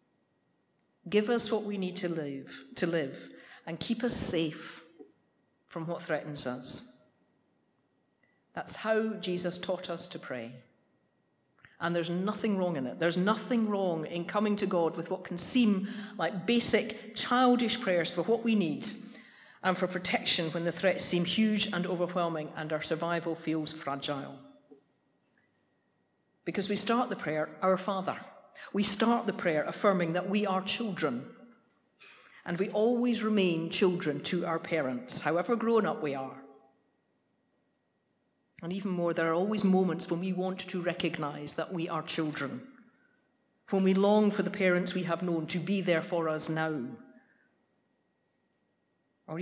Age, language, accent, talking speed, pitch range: 50-69, English, British, 150 wpm, 165-210 Hz